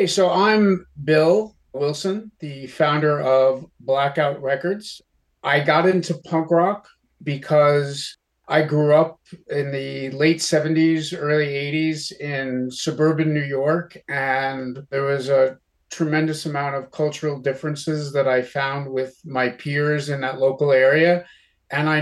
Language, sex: English, male